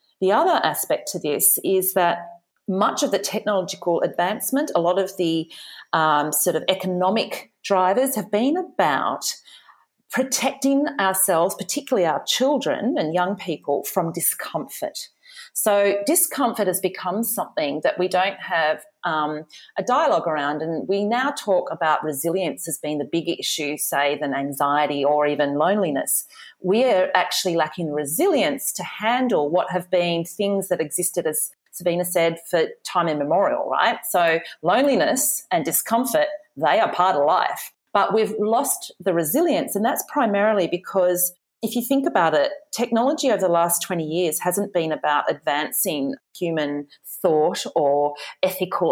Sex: female